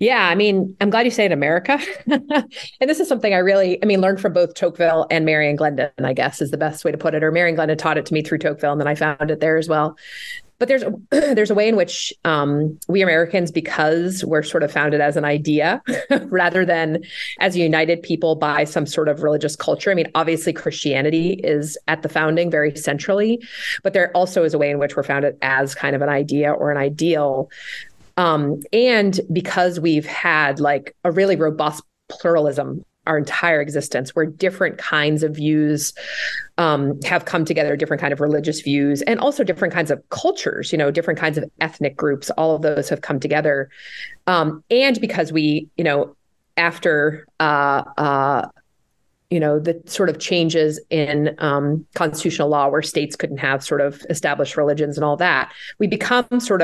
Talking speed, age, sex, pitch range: 200 wpm, 30-49, female, 150-180 Hz